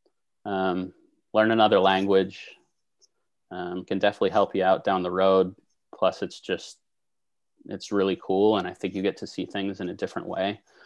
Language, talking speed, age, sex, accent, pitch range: English, 170 wpm, 30-49, male, American, 95-115 Hz